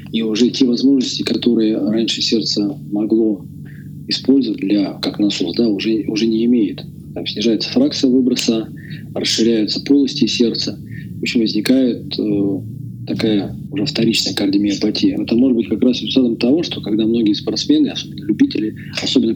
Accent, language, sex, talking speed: native, Russian, male, 145 wpm